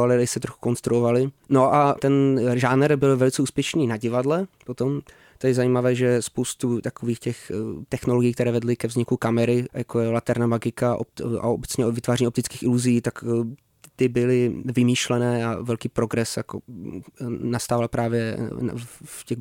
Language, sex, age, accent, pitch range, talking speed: Czech, male, 20-39, native, 120-135 Hz, 150 wpm